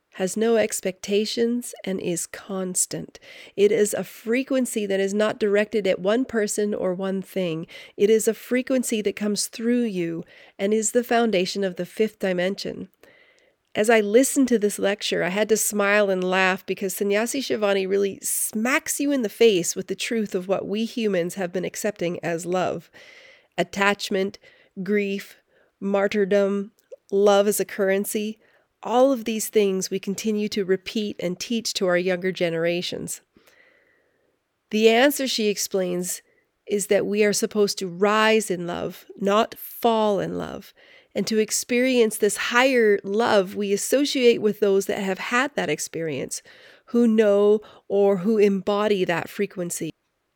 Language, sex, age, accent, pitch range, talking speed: English, female, 40-59, American, 195-235 Hz, 155 wpm